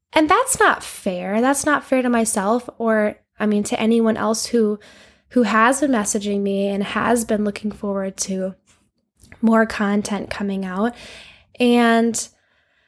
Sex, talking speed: female, 150 wpm